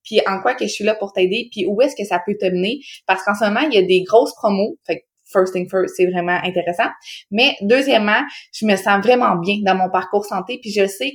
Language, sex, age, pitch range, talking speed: French, female, 20-39, 185-225 Hz, 260 wpm